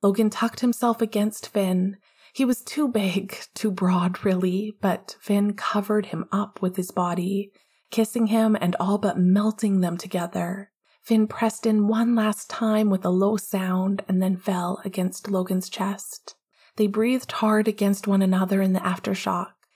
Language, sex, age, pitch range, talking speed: English, female, 20-39, 185-215 Hz, 160 wpm